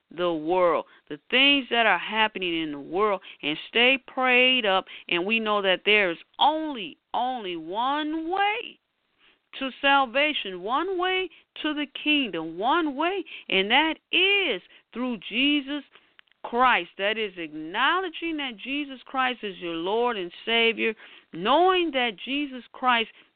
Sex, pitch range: female, 205-295 Hz